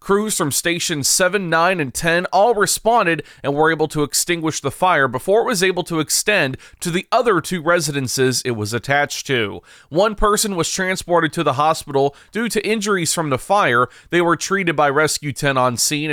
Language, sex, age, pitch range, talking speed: English, male, 30-49, 140-190 Hz, 195 wpm